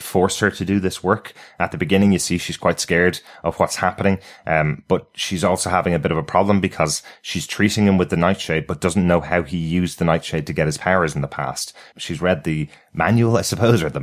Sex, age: male, 30-49